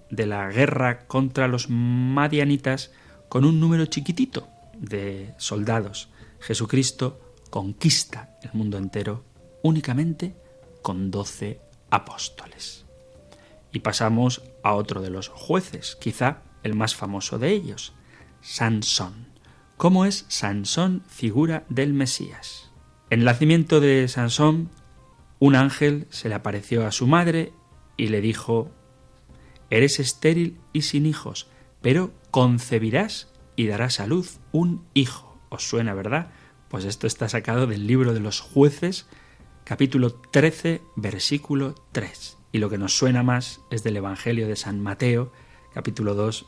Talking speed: 130 wpm